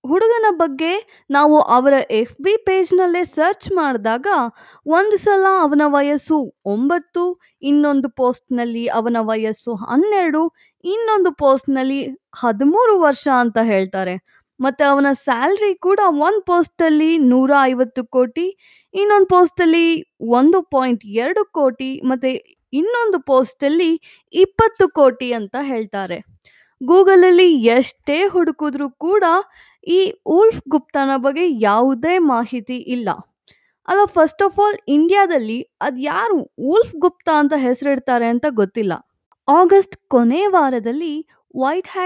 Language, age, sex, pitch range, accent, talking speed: Kannada, 20-39, female, 245-350 Hz, native, 110 wpm